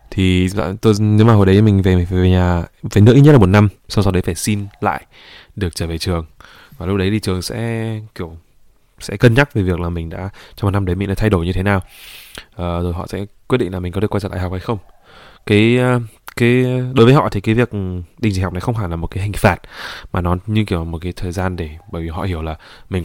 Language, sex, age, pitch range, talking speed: Vietnamese, male, 20-39, 85-110 Hz, 275 wpm